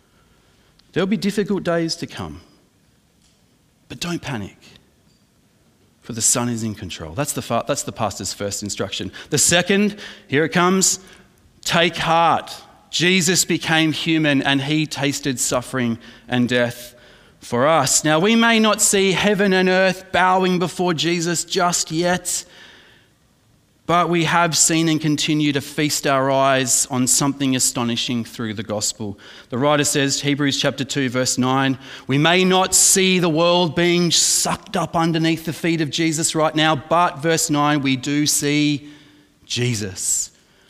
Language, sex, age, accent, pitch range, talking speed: English, male, 30-49, Australian, 130-170 Hz, 150 wpm